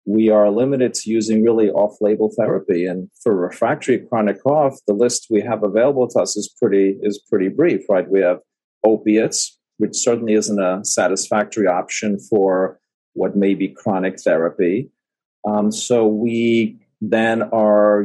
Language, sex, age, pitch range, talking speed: English, male, 40-59, 100-115 Hz, 150 wpm